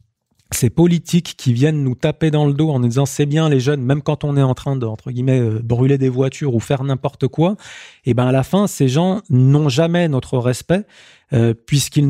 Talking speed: 235 wpm